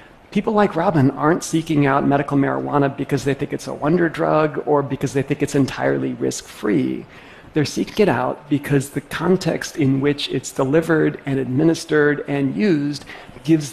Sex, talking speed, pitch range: male, 165 wpm, 135-155 Hz